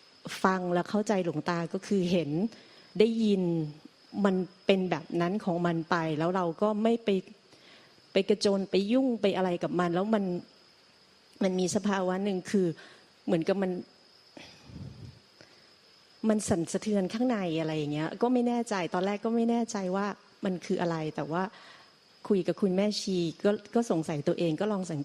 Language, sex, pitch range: Thai, female, 170-210 Hz